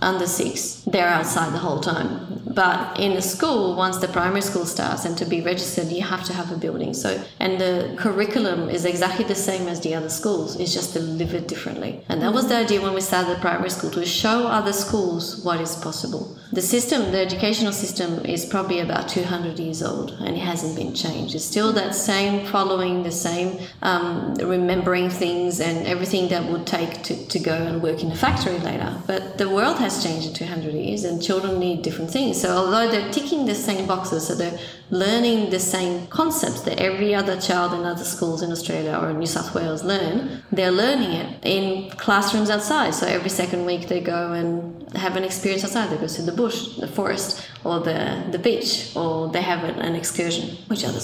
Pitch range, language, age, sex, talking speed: 170-200 Hz, English, 30-49, female, 210 wpm